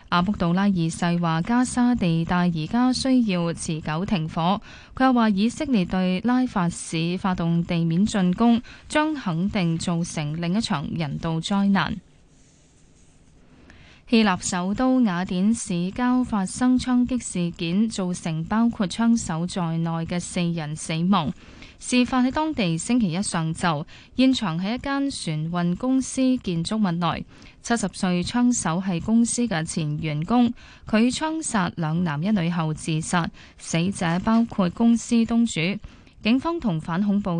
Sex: female